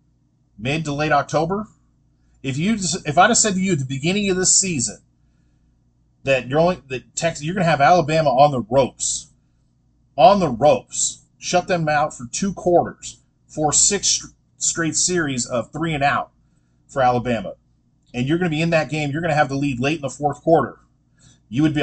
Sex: male